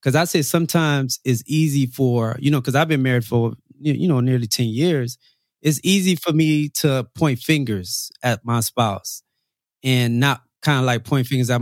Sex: male